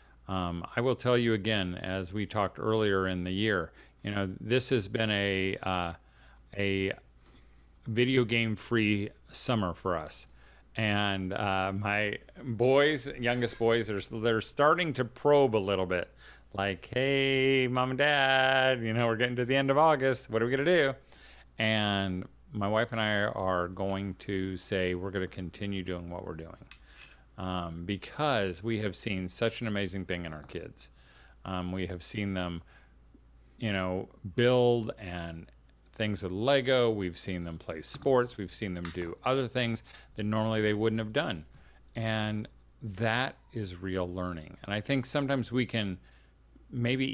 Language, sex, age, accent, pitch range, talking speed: English, male, 40-59, American, 90-115 Hz, 165 wpm